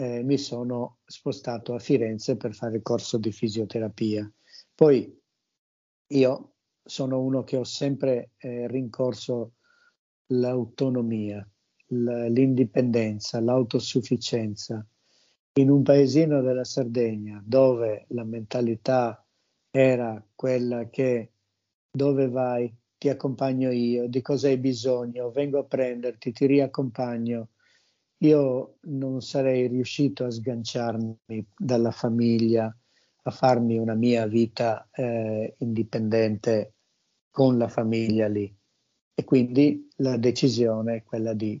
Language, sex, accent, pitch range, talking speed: Italian, male, native, 115-130 Hz, 110 wpm